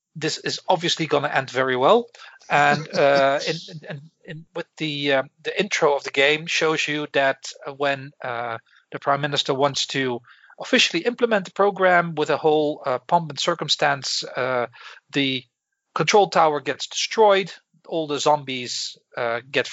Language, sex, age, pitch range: English, male, 40-59, 140-190 Hz